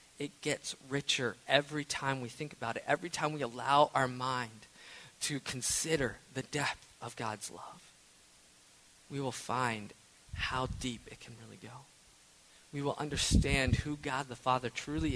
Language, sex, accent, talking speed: English, male, American, 155 wpm